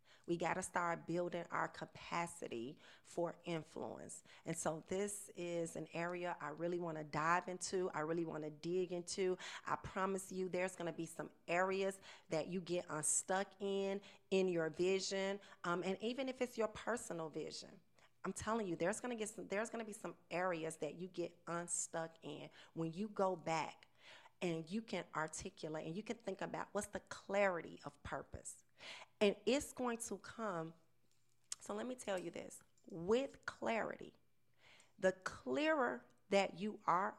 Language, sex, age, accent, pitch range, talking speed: English, female, 40-59, American, 165-205 Hz, 160 wpm